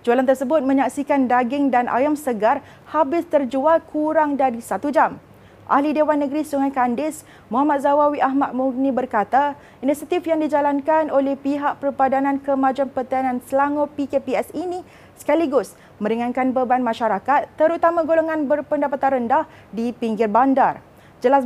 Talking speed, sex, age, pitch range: 130 wpm, female, 30-49, 255-295 Hz